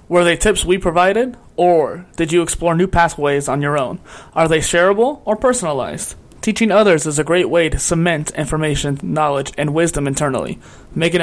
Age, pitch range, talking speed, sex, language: 20-39, 155-195 Hz, 175 wpm, male, English